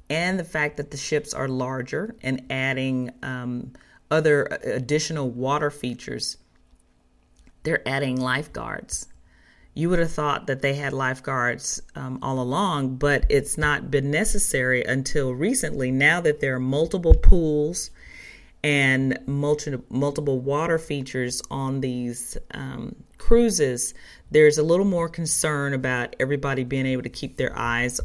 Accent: American